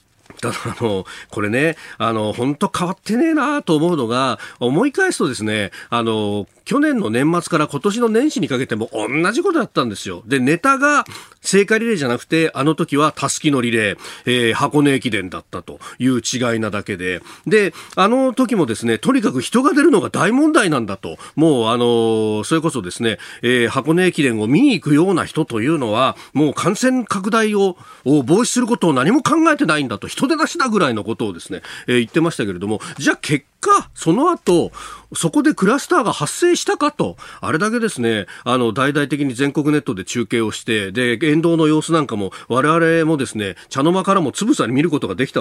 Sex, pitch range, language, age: male, 115-190 Hz, Japanese, 40-59